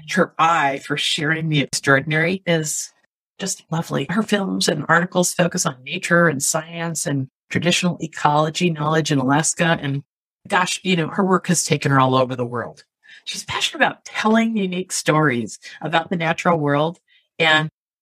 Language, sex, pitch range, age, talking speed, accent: English, female, 150-190 Hz, 50-69, 160 wpm, American